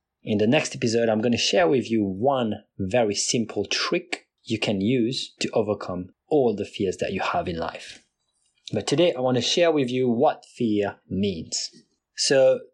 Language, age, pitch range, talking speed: English, 30-49, 110-145 Hz, 175 wpm